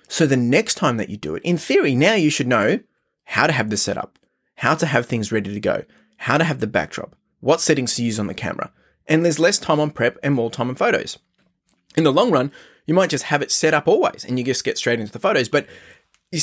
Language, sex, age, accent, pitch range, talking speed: English, male, 20-39, Australian, 120-155 Hz, 260 wpm